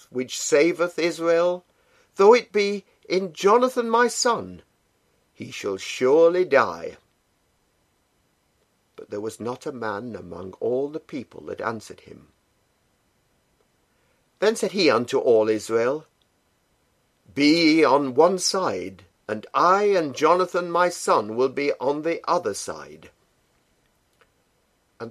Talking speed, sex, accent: 120 wpm, male, British